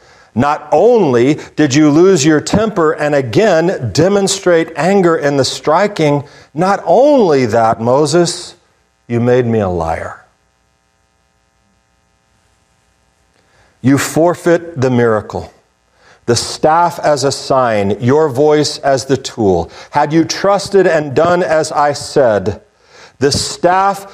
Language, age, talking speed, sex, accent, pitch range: English, 50-69, 115 wpm, male, American, 115-185 Hz